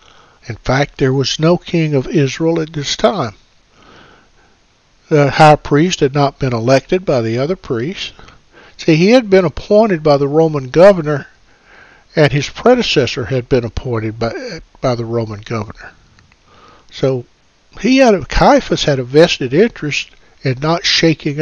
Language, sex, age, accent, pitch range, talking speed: English, male, 60-79, American, 130-165 Hz, 150 wpm